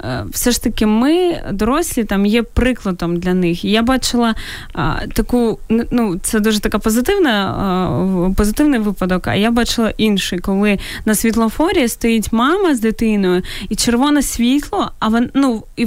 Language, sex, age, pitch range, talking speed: Ukrainian, female, 20-39, 230-300 Hz, 150 wpm